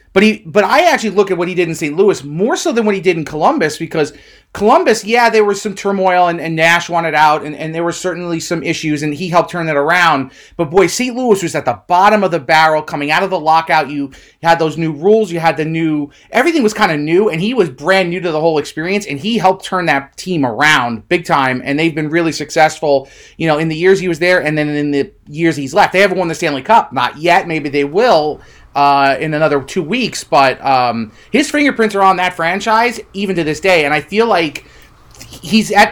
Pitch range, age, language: 155-190 Hz, 30-49, English